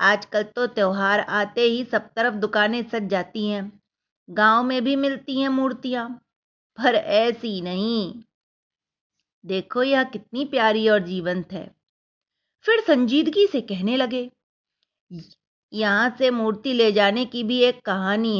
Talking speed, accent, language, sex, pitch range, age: 135 wpm, native, Hindi, female, 200-255 Hz, 30-49